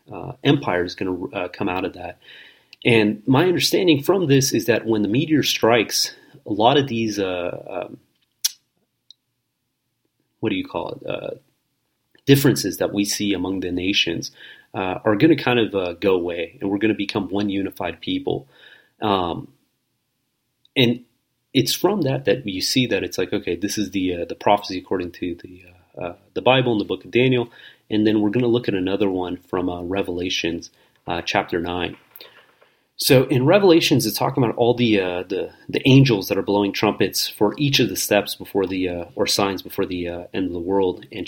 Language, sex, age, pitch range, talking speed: English, male, 30-49, 95-120 Hz, 200 wpm